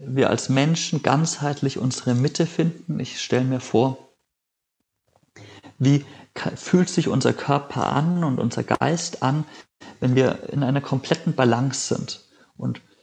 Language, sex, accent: German, male, German